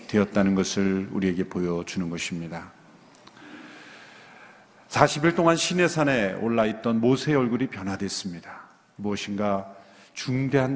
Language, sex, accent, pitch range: Korean, male, native, 100-145 Hz